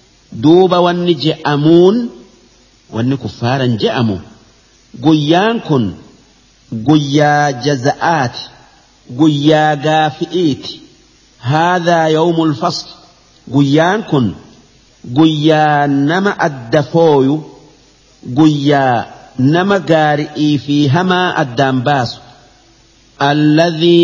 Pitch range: 130-165 Hz